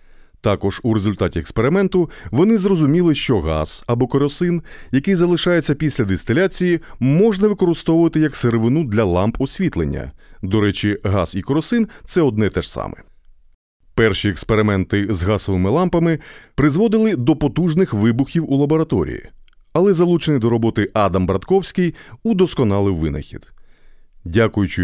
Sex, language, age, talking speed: male, Ukrainian, 30-49, 125 wpm